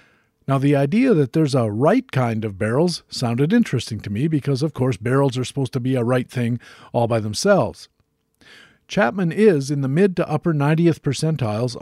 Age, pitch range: 50-69, 120-160 Hz